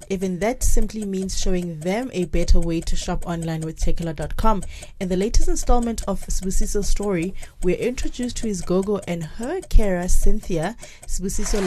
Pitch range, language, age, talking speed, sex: 175-225 Hz, English, 20-39, 160 wpm, female